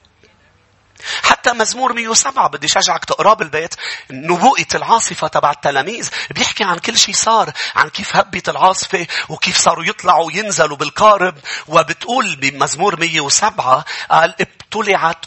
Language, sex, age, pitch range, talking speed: English, male, 40-59, 155-230 Hz, 120 wpm